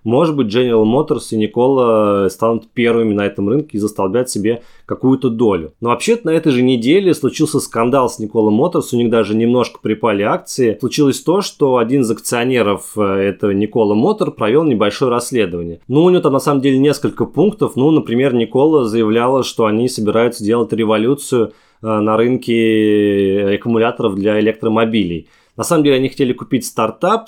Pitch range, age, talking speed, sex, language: 110-135 Hz, 20-39, 165 wpm, male, Russian